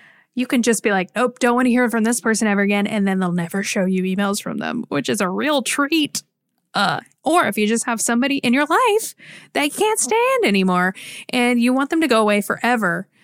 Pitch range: 200-260 Hz